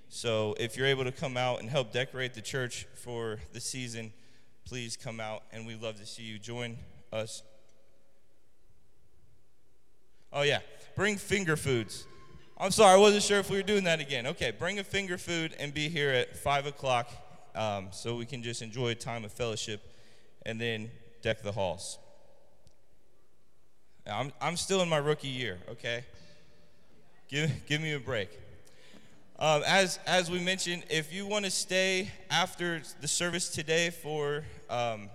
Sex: male